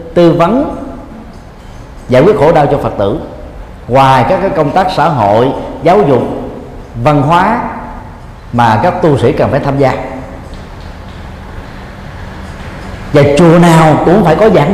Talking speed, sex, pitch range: 145 wpm, male, 110-160 Hz